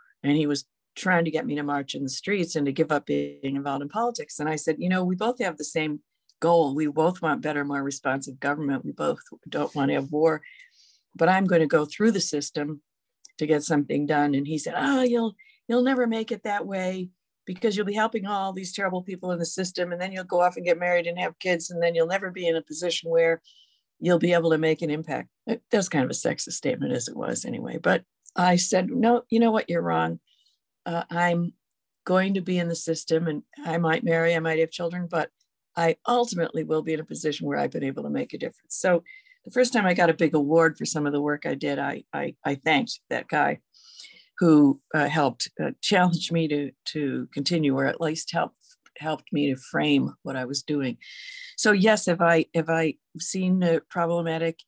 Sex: female